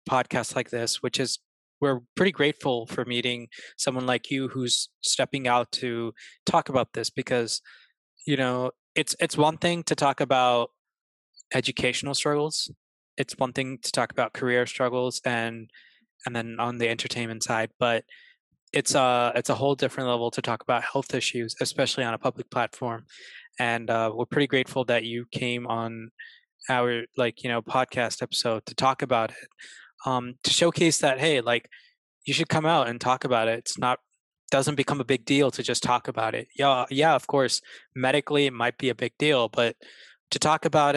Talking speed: 185 wpm